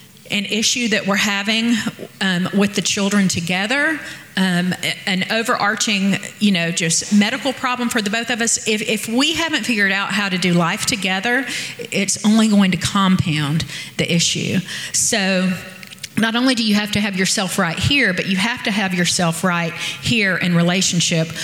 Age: 40-59